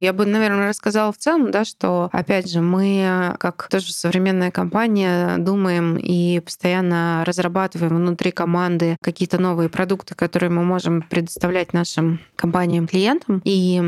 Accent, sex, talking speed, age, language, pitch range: native, female, 135 wpm, 20-39, Russian, 170-195 Hz